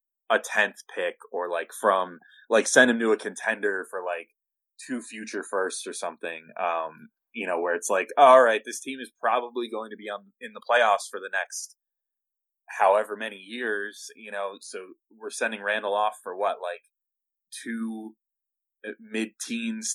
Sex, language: male, English